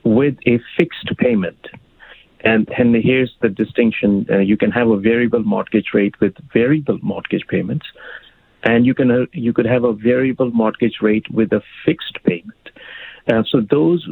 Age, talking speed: 50-69, 165 wpm